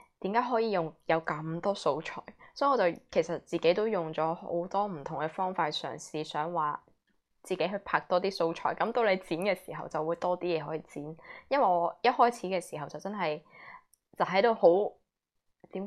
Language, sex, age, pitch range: Chinese, female, 10-29, 165-195 Hz